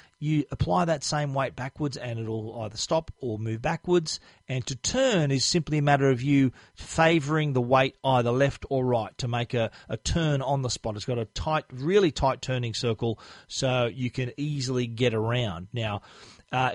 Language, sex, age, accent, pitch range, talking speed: English, male, 40-59, Australian, 120-155 Hz, 190 wpm